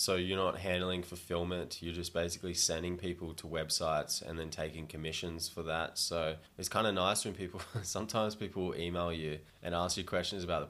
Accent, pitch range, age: Australian, 80-90 Hz, 20-39